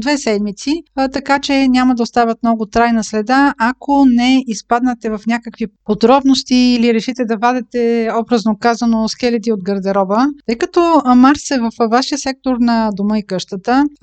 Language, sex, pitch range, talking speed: Bulgarian, female, 215-260 Hz, 155 wpm